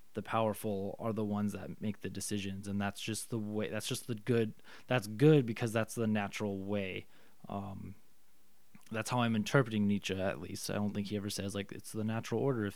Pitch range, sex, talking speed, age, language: 100-115 Hz, male, 210 wpm, 20-39, English